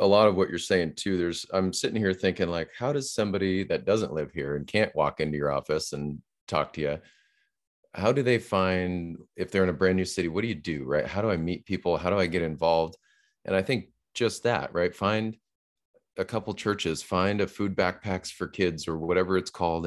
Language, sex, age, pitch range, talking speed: English, male, 30-49, 80-100 Hz, 230 wpm